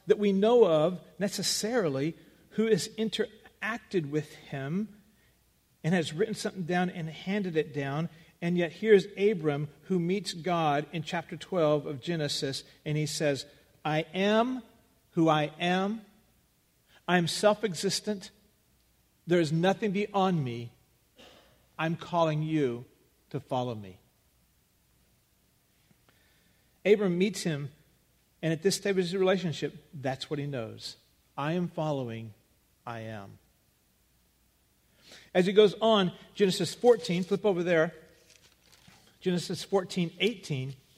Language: English